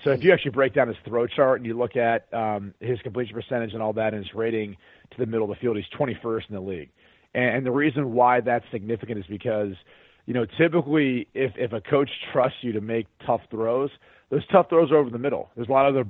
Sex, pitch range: male, 115-135 Hz